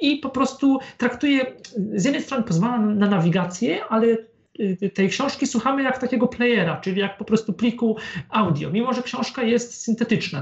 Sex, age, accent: male, 40-59, native